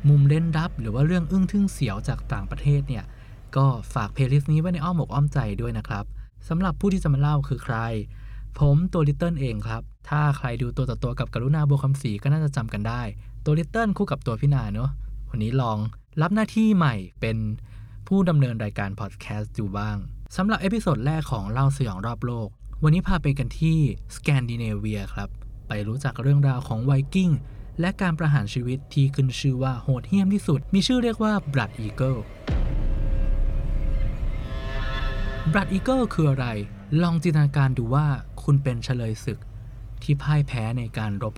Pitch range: 110-150 Hz